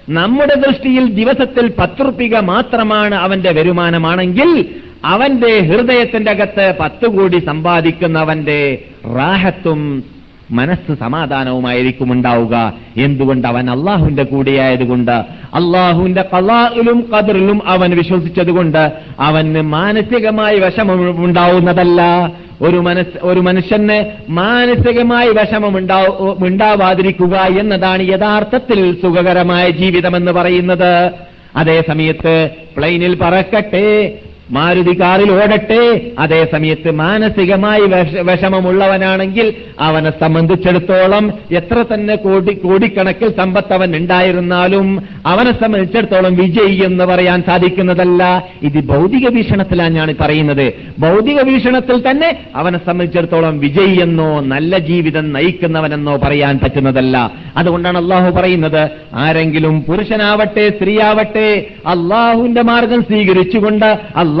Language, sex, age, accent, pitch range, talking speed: Malayalam, male, 50-69, native, 160-210 Hz, 80 wpm